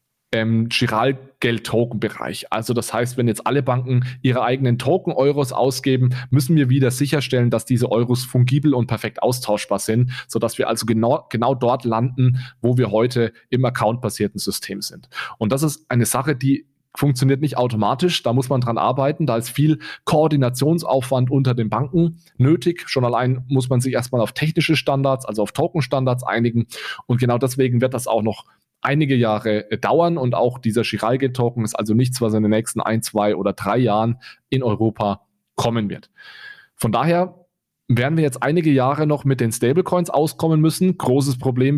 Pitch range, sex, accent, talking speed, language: 115-135 Hz, male, German, 175 wpm, German